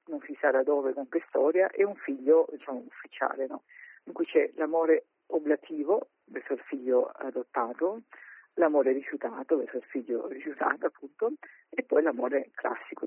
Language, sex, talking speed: Italian, female, 155 wpm